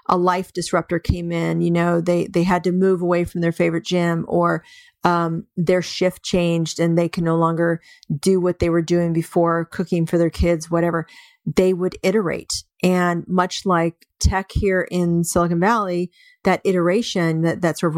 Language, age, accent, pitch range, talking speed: English, 40-59, American, 170-190 Hz, 180 wpm